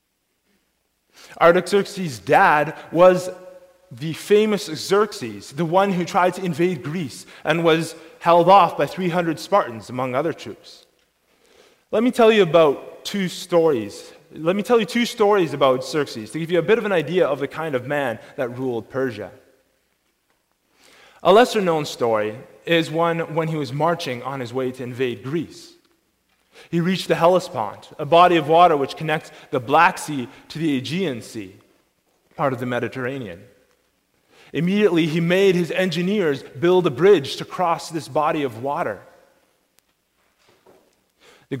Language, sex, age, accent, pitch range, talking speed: English, male, 20-39, American, 135-180 Hz, 155 wpm